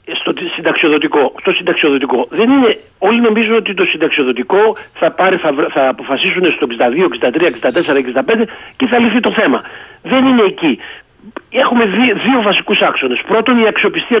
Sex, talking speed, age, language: male, 130 wpm, 60-79, Greek